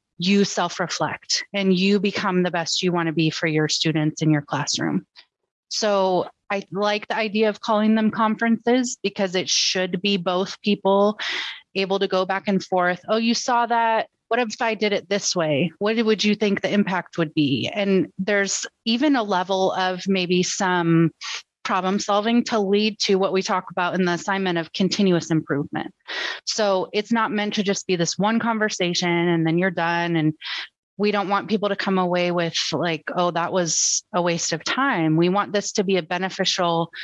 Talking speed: 190 wpm